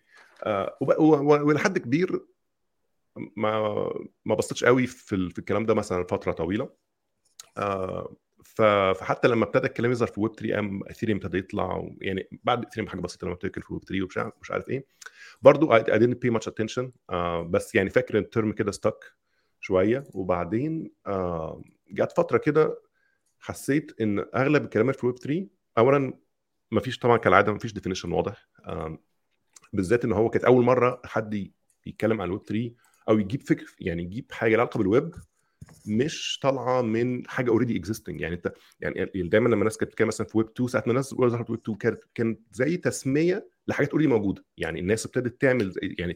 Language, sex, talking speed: Arabic, male, 180 wpm